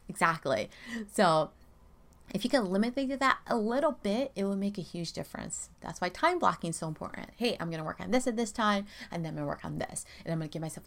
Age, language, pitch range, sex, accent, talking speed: 30-49, English, 165-220 Hz, female, American, 255 wpm